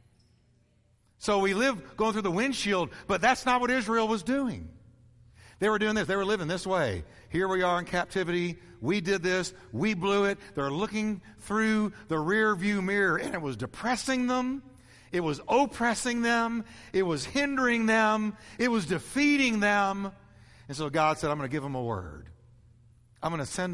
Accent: American